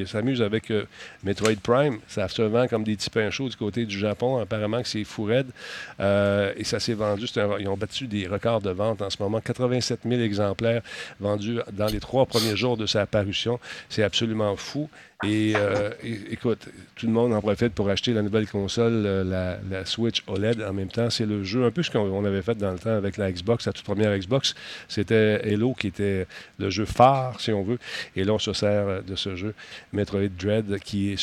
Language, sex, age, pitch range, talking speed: French, male, 50-69, 100-120 Hz, 215 wpm